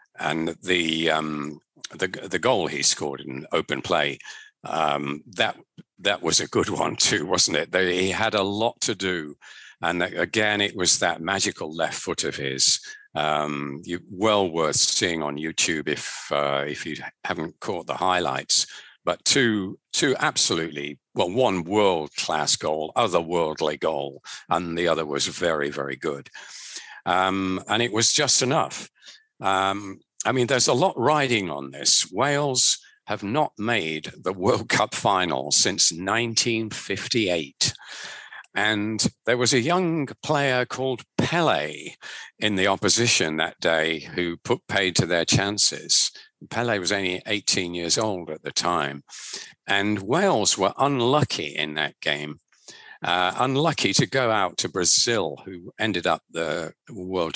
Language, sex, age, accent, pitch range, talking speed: English, male, 50-69, British, 75-105 Hz, 150 wpm